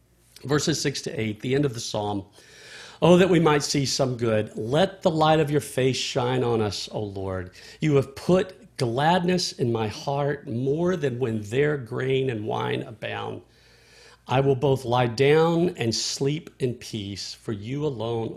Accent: American